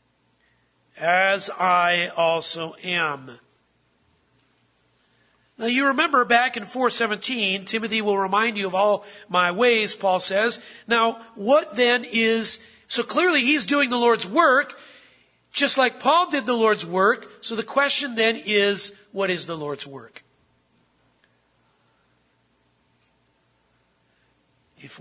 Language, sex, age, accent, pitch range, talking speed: English, male, 50-69, American, 145-210 Hz, 120 wpm